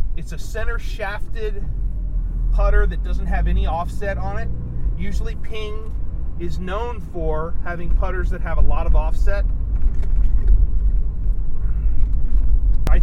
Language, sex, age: English, male, 30-49